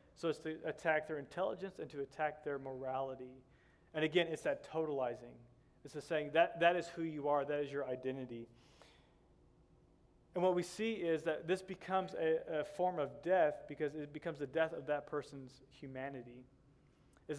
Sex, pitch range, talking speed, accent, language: male, 135-160 Hz, 180 wpm, American, English